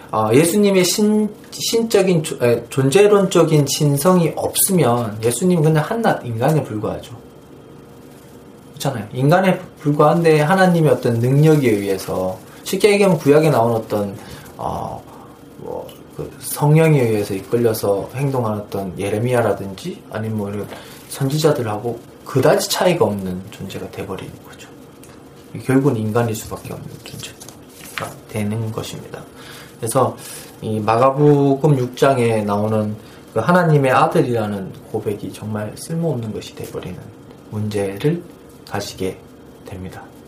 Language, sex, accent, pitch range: Korean, male, native, 110-155 Hz